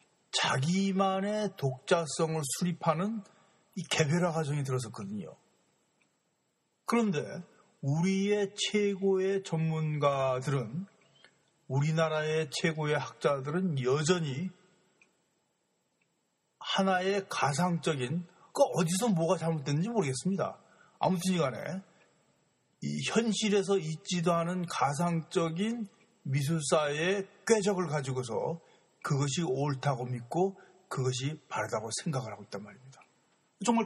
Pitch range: 140-190 Hz